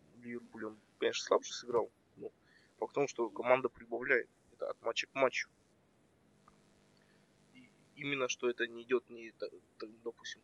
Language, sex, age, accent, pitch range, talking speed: Russian, male, 20-39, native, 115-160 Hz, 140 wpm